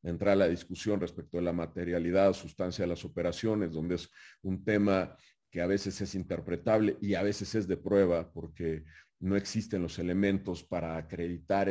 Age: 40-59